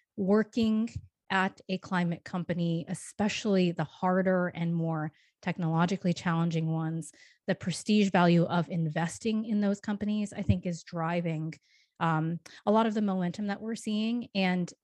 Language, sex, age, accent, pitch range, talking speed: English, female, 30-49, American, 160-190 Hz, 140 wpm